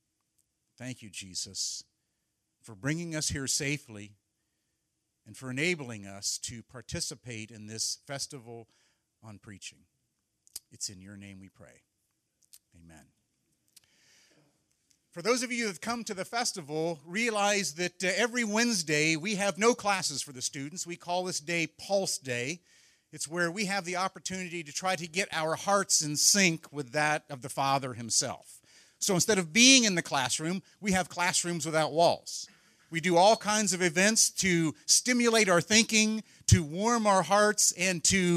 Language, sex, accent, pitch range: English, male, American, 140-190 Hz